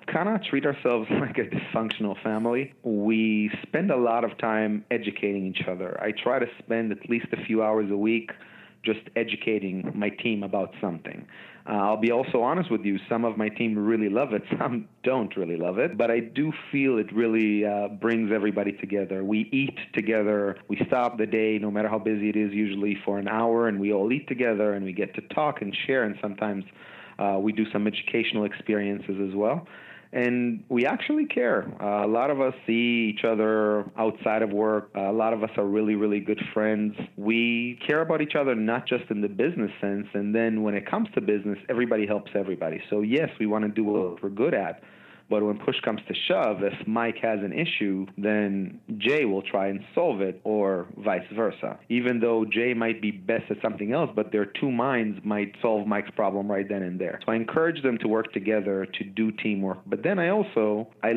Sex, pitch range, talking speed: male, 100-115 Hz, 210 wpm